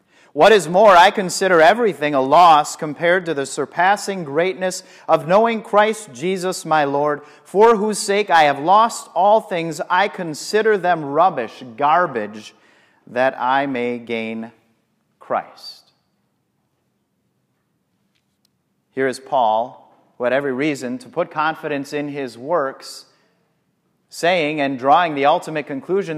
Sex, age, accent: male, 40-59, American